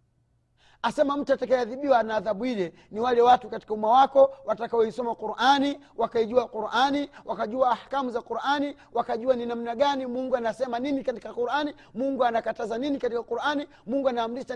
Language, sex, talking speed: Swahili, male, 150 wpm